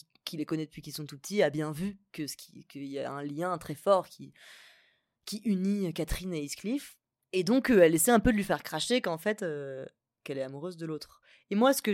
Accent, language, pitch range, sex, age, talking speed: French, French, 160-220 Hz, female, 20-39, 230 wpm